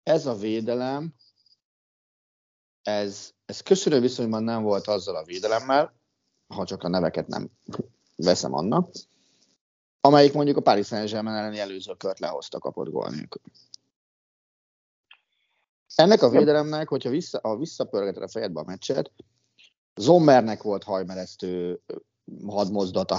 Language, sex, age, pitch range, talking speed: Hungarian, male, 30-49, 100-135 Hz, 105 wpm